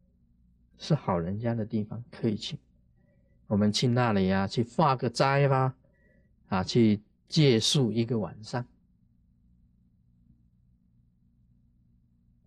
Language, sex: Chinese, male